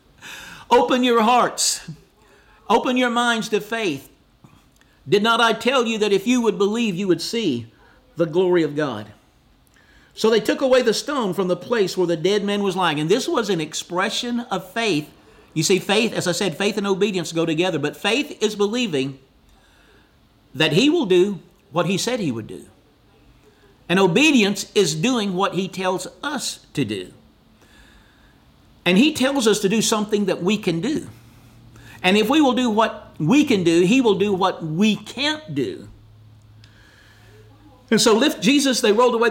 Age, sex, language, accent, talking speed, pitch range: 50-69, male, English, American, 175 wpm, 165-225 Hz